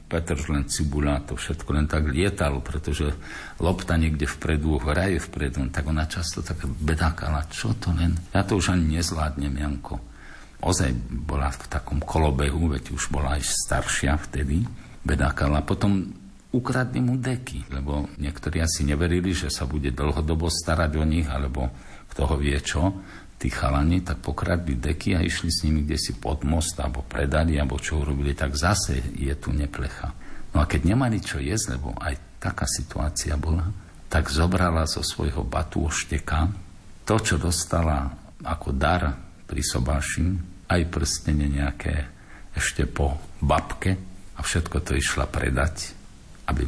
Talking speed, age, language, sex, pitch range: 155 wpm, 50-69, Slovak, male, 70-85 Hz